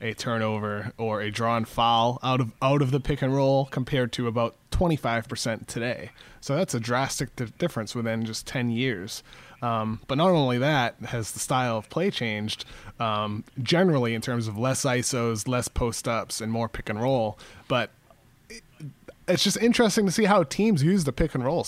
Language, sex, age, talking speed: English, male, 20-39, 190 wpm